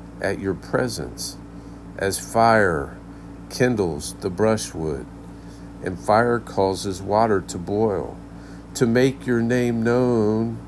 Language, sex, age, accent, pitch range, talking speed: English, male, 50-69, American, 95-120 Hz, 105 wpm